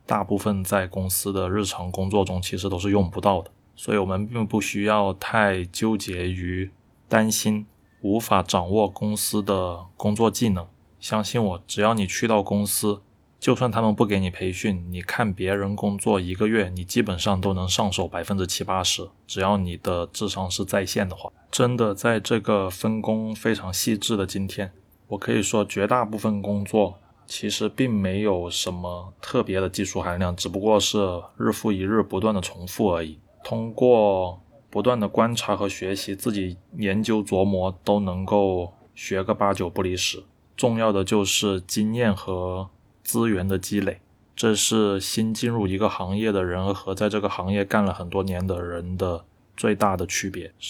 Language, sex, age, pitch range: Chinese, male, 20-39, 95-110 Hz